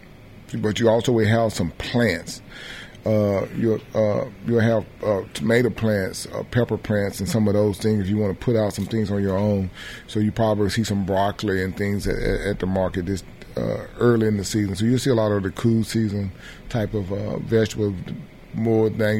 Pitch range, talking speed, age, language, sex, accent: 100-110 Hz, 205 wpm, 30-49, English, male, American